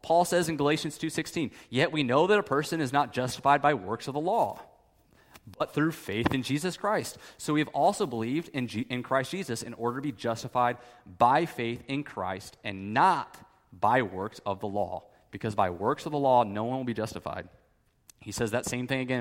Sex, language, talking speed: male, English, 210 wpm